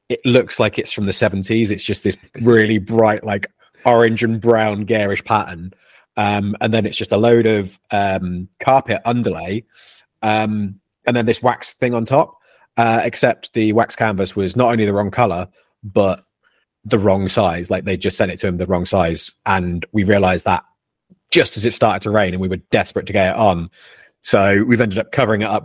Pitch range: 90-110 Hz